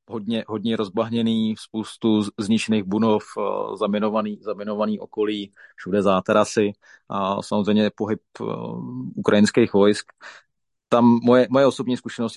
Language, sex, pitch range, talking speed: Slovak, male, 105-110 Hz, 95 wpm